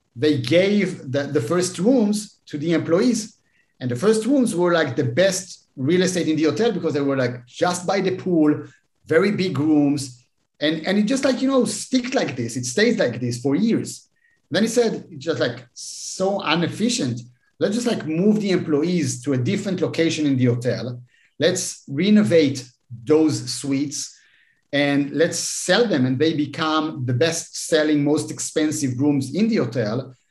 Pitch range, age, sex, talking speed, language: 140-185 Hz, 50-69, male, 175 wpm, Dutch